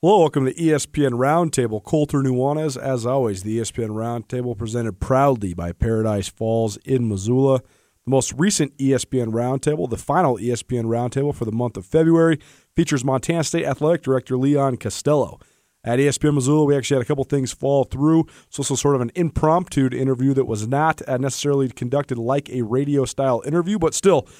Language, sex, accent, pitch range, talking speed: English, male, American, 120-145 Hz, 170 wpm